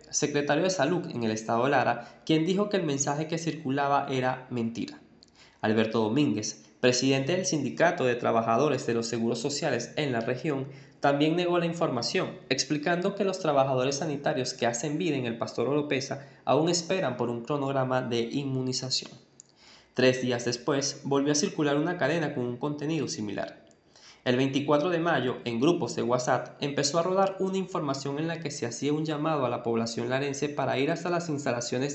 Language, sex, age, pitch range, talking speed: Spanish, male, 20-39, 125-155 Hz, 175 wpm